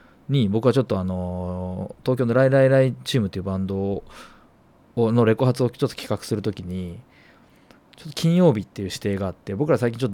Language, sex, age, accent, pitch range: Japanese, male, 20-39, native, 95-120 Hz